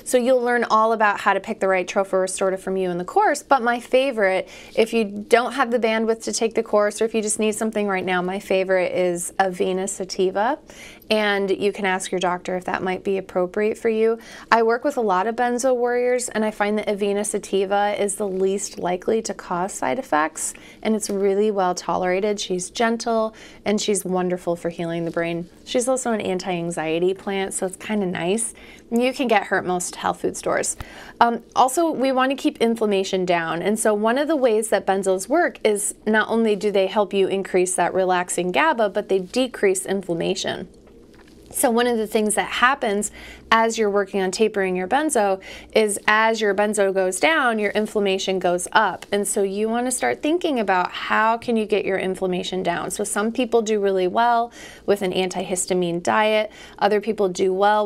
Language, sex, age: English, female, 20-39